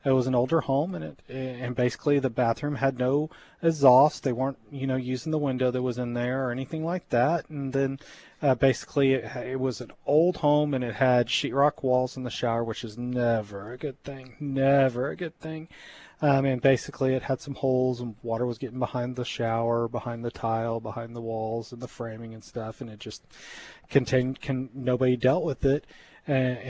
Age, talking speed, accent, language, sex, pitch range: 30-49, 205 wpm, American, English, male, 120-140 Hz